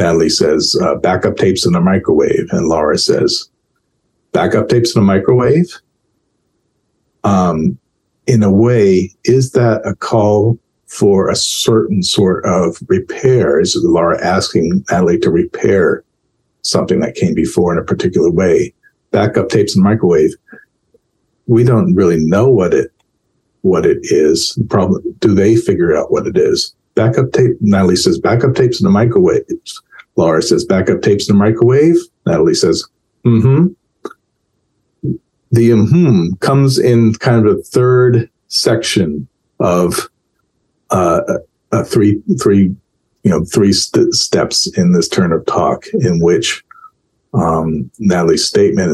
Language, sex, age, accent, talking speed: English, male, 50-69, American, 140 wpm